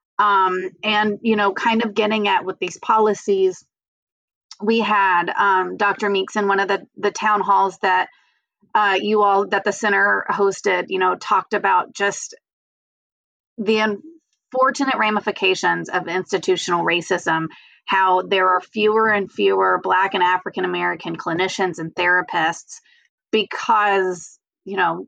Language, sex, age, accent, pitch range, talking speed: English, female, 30-49, American, 185-215 Hz, 135 wpm